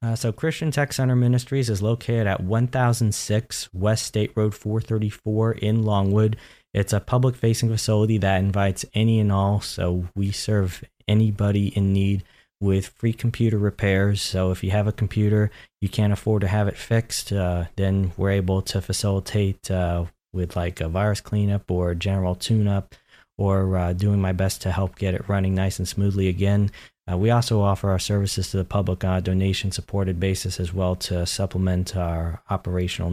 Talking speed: 180 wpm